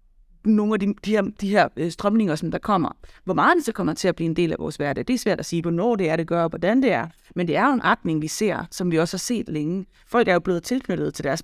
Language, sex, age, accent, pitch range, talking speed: Danish, female, 30-49, native, 175-240 Hz, 315 wpm